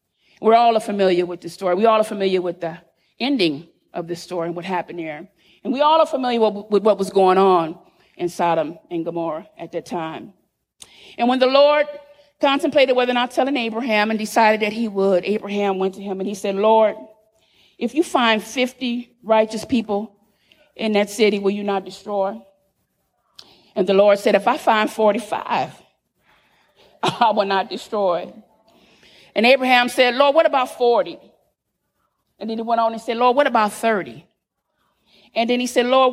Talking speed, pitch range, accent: 180 wpm, 190-245 Hz, American